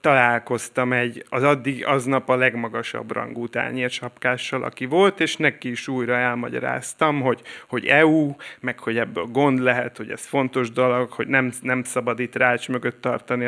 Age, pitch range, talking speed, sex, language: 30-49, 120-145 Hz, 160 wpm, male, Hungarian